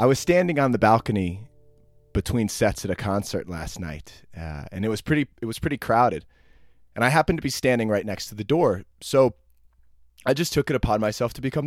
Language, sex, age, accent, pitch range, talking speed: English, male, 20-39, American, 95-135 Hz, 210 wpm